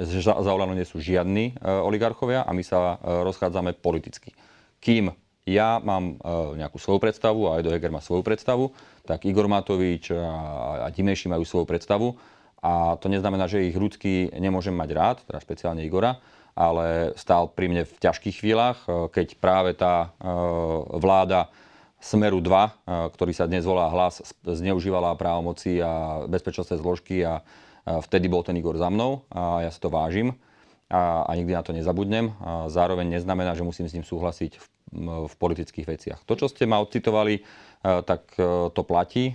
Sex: male